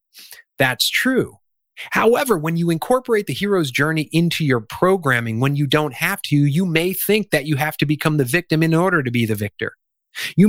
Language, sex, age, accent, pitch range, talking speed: English, male, 30-49, American, 130-190 Hz, 195 wpm